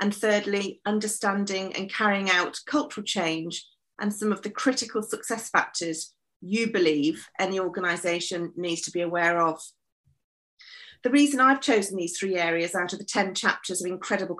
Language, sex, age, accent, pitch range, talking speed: English, female, 40-59, British, 180-220 Hz, 160 wpm